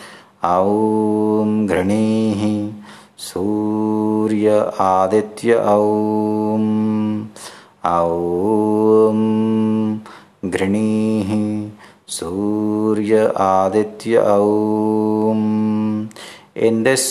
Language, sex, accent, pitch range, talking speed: English, male, Indian, 100-110 Hz, 40 wpm